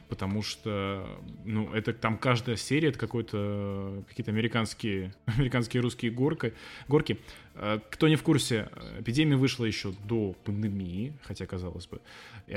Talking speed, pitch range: 135 wpm, 105-125 Hz